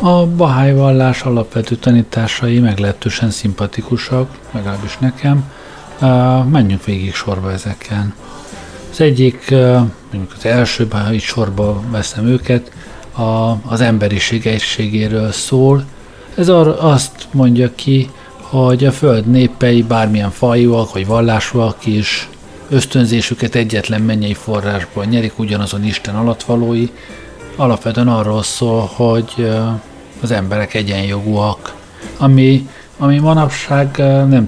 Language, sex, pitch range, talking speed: Hungarian, male, 105-125 Hz, 100 wpm